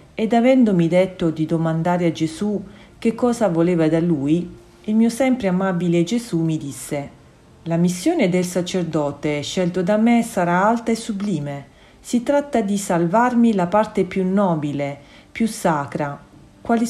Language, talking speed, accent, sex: Italian, 145 wpm, native, female